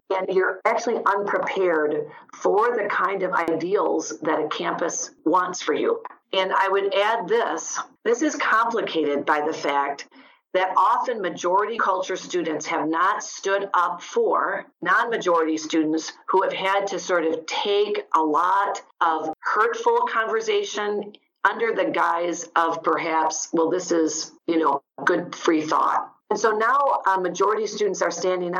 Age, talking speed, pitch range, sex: 40-59, 150 wpm, 175-280 Hz, female